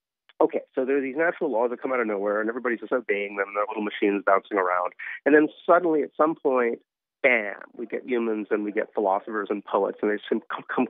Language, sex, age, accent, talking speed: English, male, 40-59, American, 230 wpm